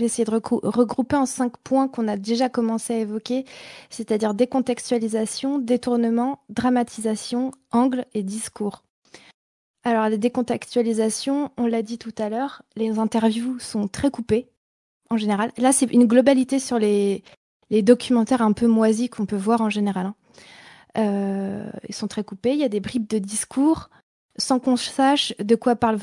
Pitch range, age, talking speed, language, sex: 200-240 Hz, 20-39, 165 wpm, French, female